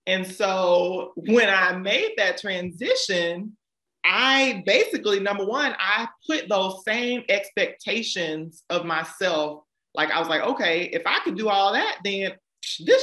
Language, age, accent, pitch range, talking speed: English, 30-49, American, 165-250 Hz, 145 wpm